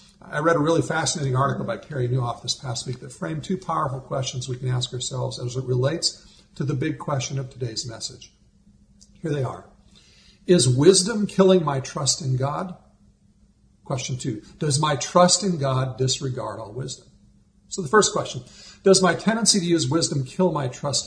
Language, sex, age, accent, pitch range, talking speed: English, male, 50-69, American, 130-170 Hz, 180 wpm